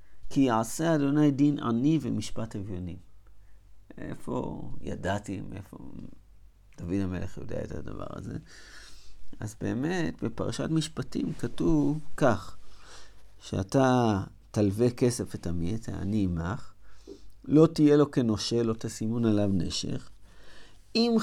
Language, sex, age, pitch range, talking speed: Hebrew, male, 50-69, 100-145 Hz, 105 wpm